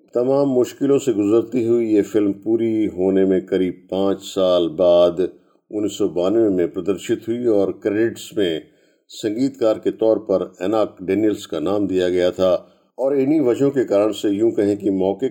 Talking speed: 175 wpm